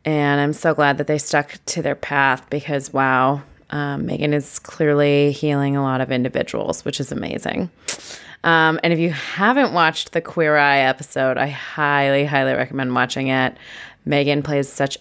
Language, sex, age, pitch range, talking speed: English, female, 20-39, 150-195 Hz, 170 wpm